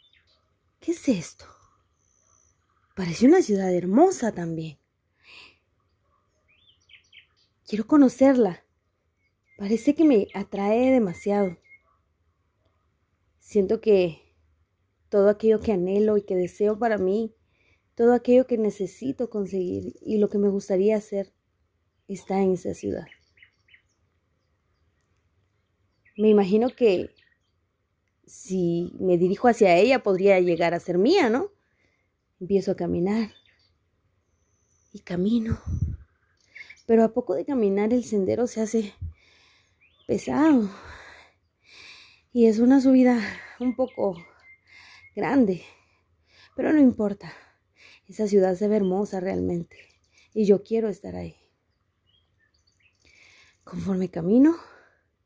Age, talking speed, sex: 30-49, 100 wpm, female